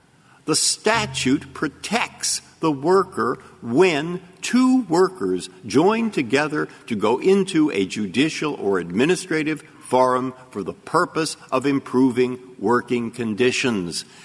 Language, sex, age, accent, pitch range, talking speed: English, male, 50-69, American, 105-155 Hz, 105 wpm